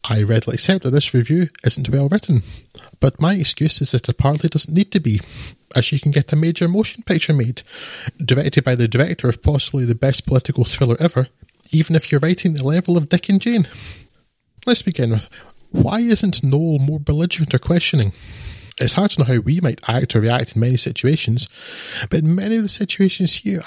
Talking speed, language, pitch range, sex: 205 wpm, English, 120-165 Hz, male